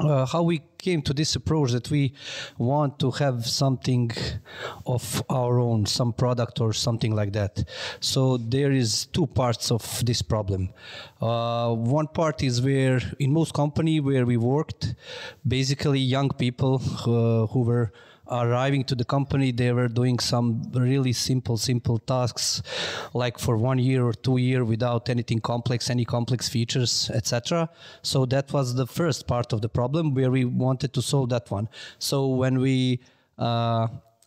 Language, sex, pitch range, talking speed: English, male, 120-135 Hz, 165 wpm